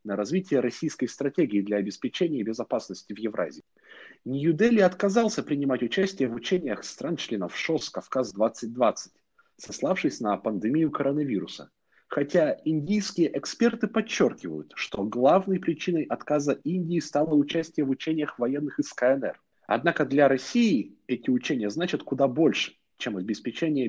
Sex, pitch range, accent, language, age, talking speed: male, 120-180 Hz, native, Russian, 30-49, 120 wpm